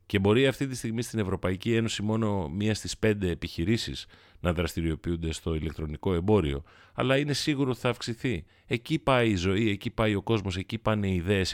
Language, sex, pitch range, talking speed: Greek, male, 95-130 Hz, 185 wpm